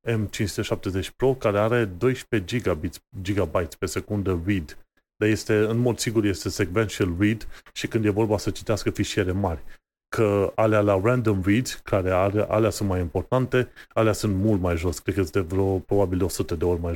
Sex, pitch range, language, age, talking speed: male, 95-115 Hz, Romanian, 30-49, 175 wpm